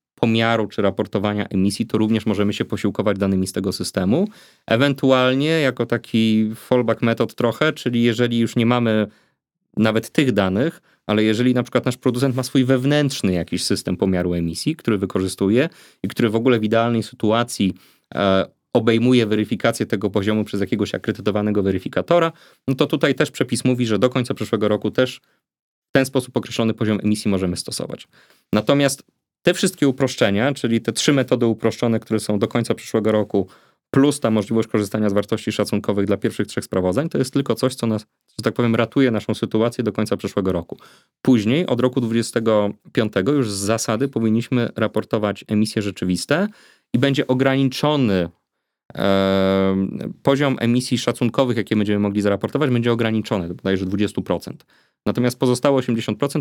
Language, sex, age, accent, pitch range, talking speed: Polish, male, 30-49, native, 105-125 Hz, 155 wpm